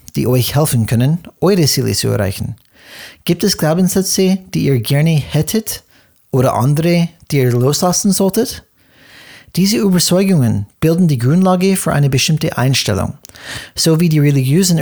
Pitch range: 125-175 Hz